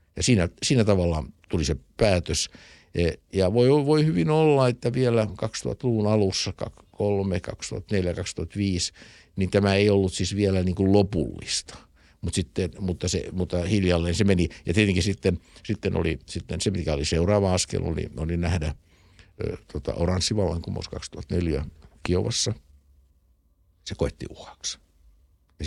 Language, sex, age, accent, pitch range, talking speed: Finnish, male, 60-79, native, 75-100 Hz, 135 wpm